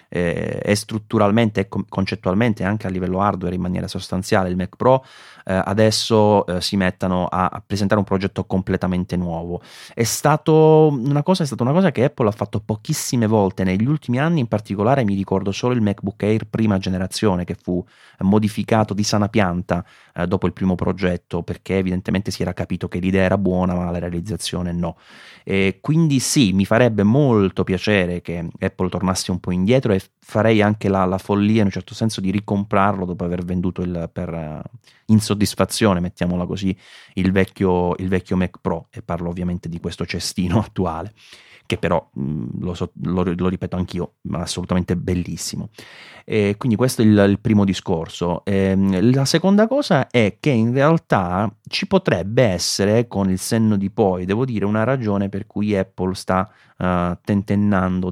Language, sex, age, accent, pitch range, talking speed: Italian, male, 30-49, native, 90-110 Hz, 170 wpm